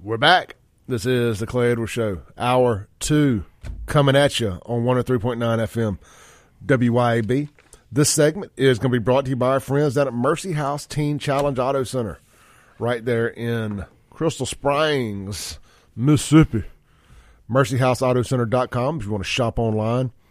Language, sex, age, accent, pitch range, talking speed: English, male, 30-49, American, 110-135 Hz, 150 wpm